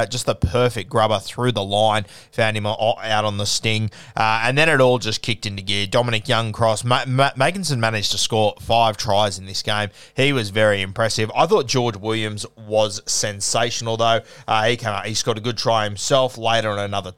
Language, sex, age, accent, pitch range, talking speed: English, male, 20-39, Australian, 110-130 Hz, 210 wpm